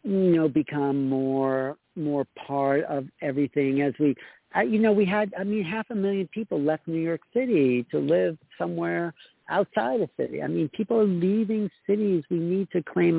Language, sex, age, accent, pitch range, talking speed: English, male, 60-79, American, 135-185 Hz, 180 wpm